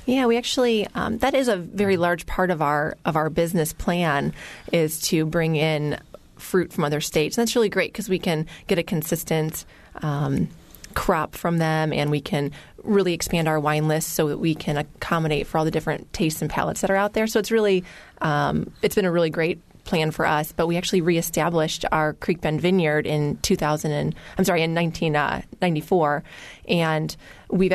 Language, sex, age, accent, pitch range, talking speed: English, female, 20-39, American, 150-180 Hz, 195 wpm